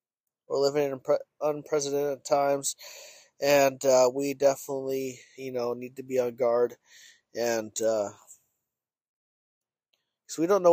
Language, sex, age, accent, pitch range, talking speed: English, male, 20-39, American, 130-150 Hz, 130 wpm